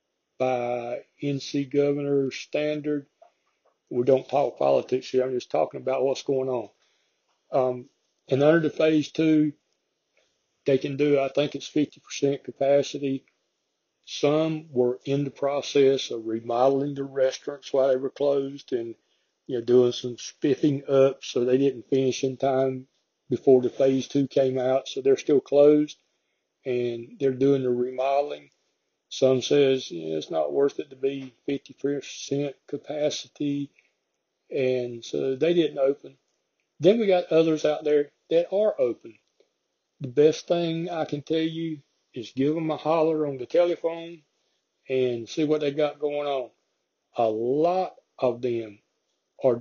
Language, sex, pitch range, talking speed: English, male, 130-150 Hz, 150 wpm